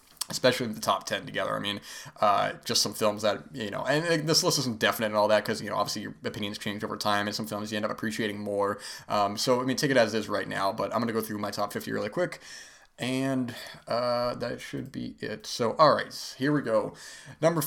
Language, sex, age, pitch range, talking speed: English, male, 20-39, 110-135 Hz, 255 wpm